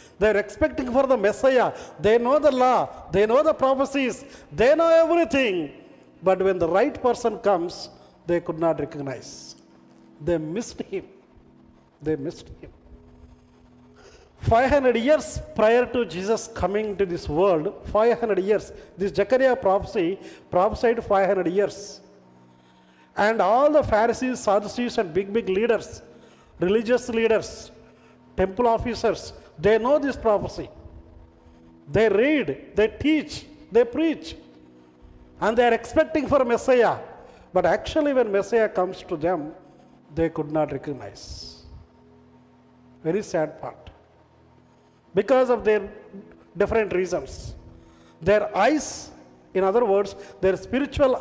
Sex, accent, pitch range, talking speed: male, native, 155-240 Hz, 125 wpm